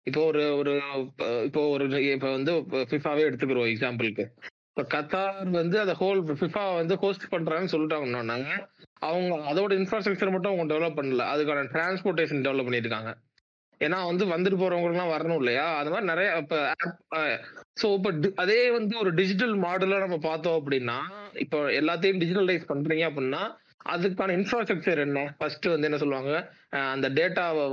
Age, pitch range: 30-49, 145-190 Hz